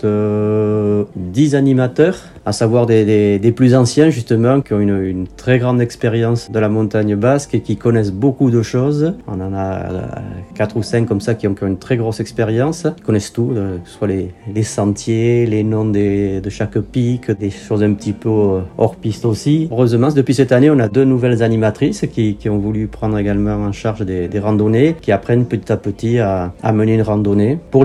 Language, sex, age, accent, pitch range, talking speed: French, male, 40-59, French, 105-125 Hz, 205 wpm